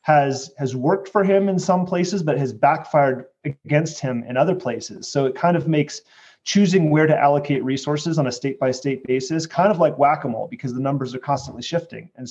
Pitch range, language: 125-155 Hz, English